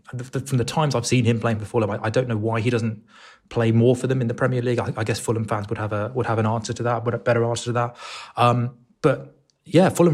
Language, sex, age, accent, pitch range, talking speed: English, male, 20-39, British, 110-130 Hz, 265 wpm